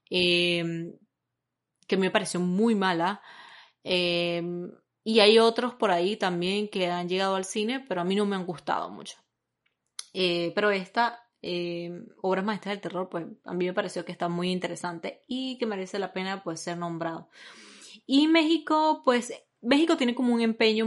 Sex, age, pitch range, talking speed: female, 20-39, 175-215 Hz, 170 wpm